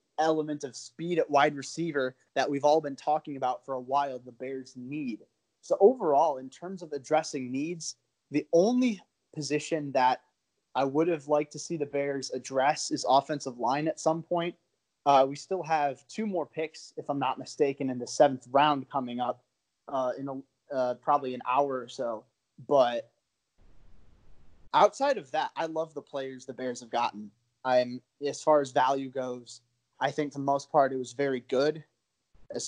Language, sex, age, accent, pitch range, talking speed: English, male, 20-39, American, 125-155 Hz, 180 wpm